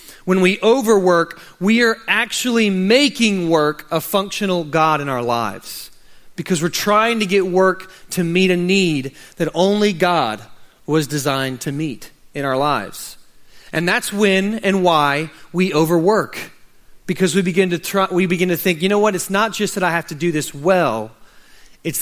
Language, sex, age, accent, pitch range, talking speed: English, male, 30-49, American, 160-200 Hz, 175 wpm